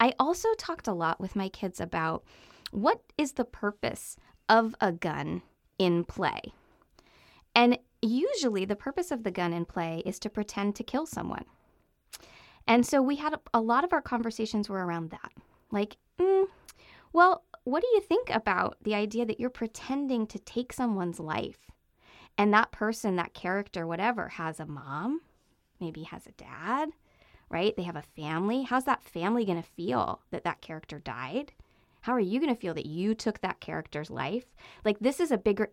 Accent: American